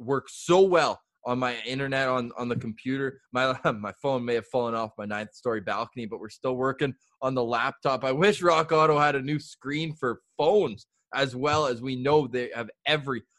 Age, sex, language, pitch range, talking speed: 20-39, male, English, 130-165 Hz, 200 wpm